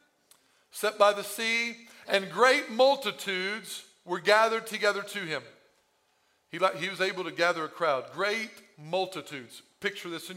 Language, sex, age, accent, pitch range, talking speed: English, male, 50-69, American, 195-260 Hz, 145 wpm